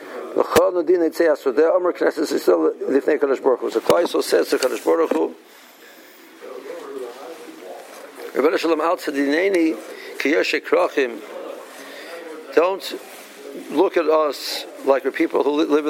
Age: 60-79